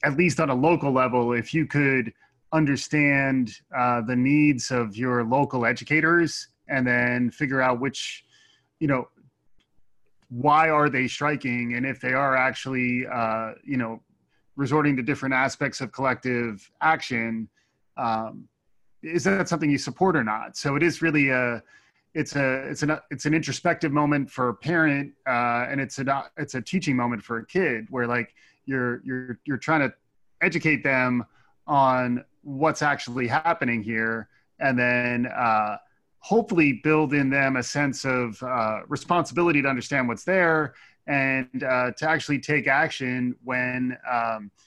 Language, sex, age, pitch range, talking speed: English, male, 20-39, 120-150 Hz, 155 wpm